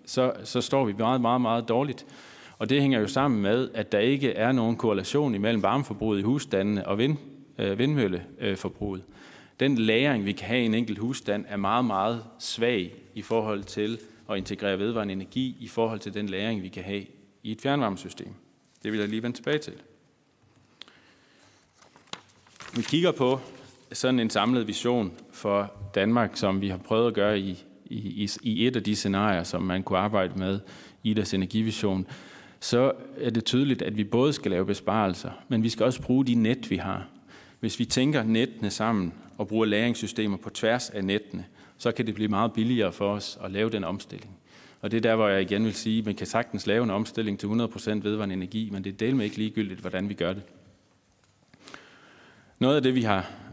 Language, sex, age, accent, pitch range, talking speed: Danish, male, 30-49, native, 100-120 Hz, 195 wpm